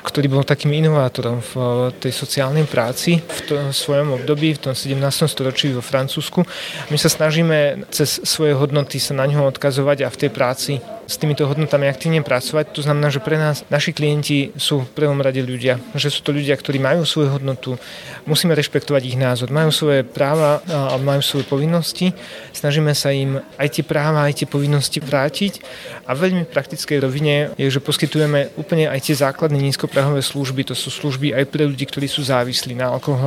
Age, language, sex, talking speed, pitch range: 30-49, Slovak, male, 190 wpm, 130-150 Hz